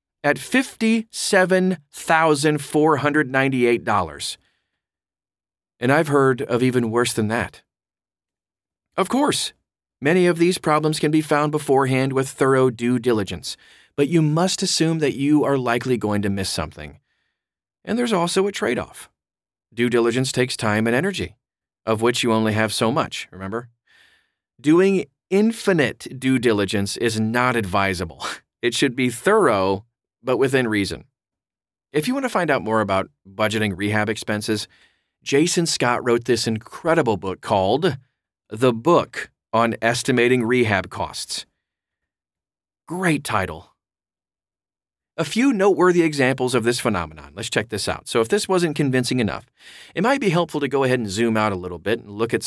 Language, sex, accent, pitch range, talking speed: English, male, American, 105-150 Hz, 150 wpm